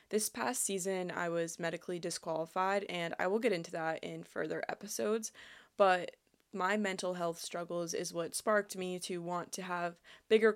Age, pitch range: 20-39, 175-210 Hz